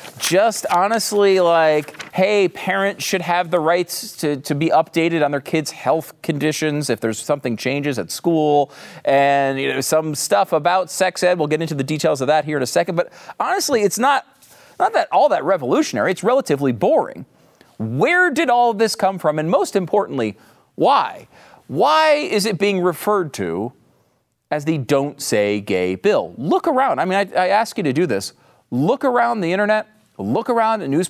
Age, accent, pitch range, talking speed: 40-59, American, 150-210 Hz, 185 wpm